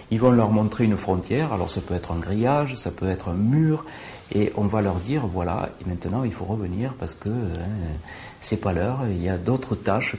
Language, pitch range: French, 100-130 Hz